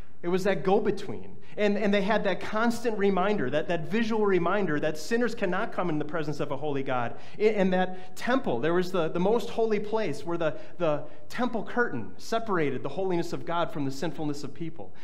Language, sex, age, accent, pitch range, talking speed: English, male, 30-49, American, 155-205 Hz, 205 wpm